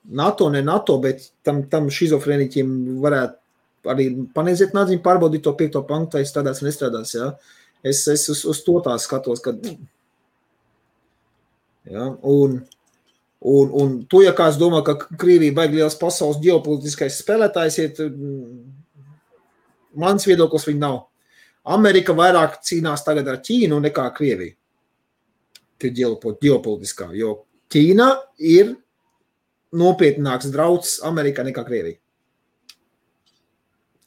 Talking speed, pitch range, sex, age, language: 120 wpm, 130-175 Hz, male, 30-49, English